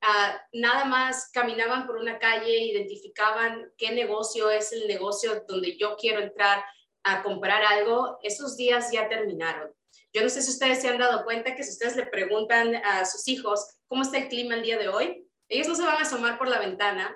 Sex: female